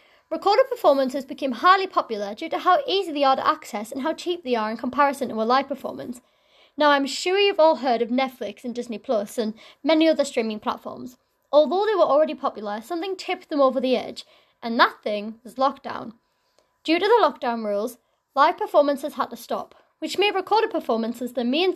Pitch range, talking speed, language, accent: 245-345 Hz, 200 wpm, English, British